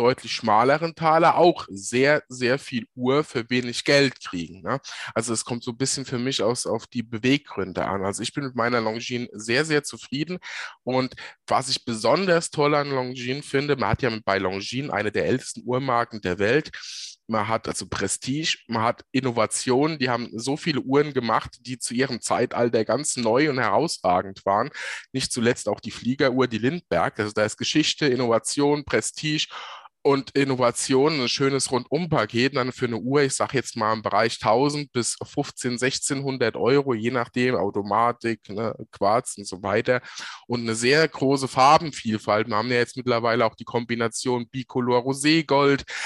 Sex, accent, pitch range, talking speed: male, German, 115-140 Hz, 170 wpm